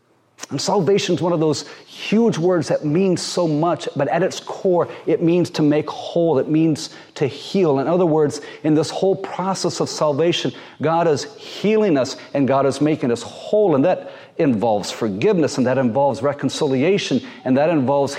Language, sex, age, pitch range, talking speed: English, male, 40-59, 130-165 Hz, 180 wpm